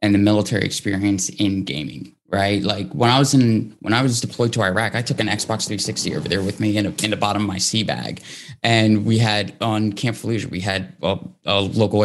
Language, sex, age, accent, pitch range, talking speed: English, male, 20-39, American, 100-115 Hz, 235 wpm